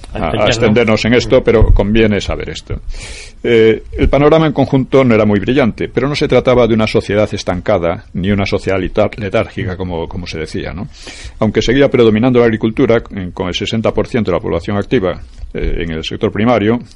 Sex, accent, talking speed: male, Spanish, 180 wpm